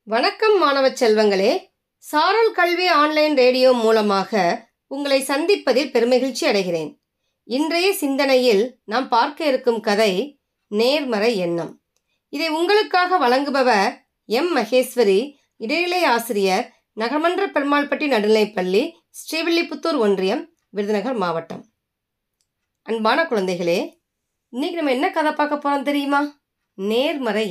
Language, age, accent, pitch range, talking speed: Tamil, 30-49, native, 205-290 Hz, 95 wpm